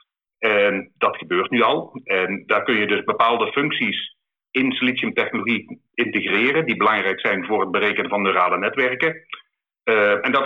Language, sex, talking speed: Dutch, male, 155 wpm